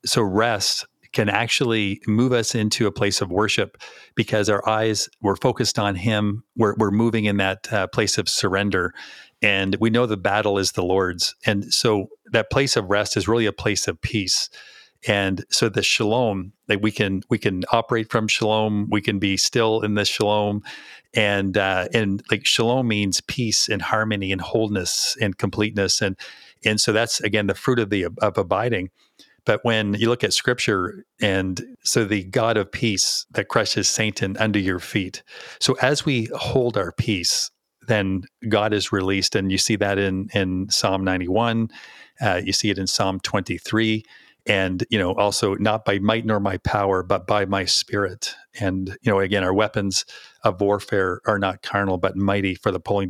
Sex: male